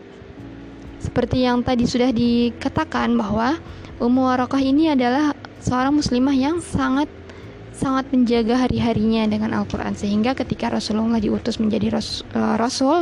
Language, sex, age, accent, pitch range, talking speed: Indonesian, female, 20-39, native, 220-265 Hz, 115 wpm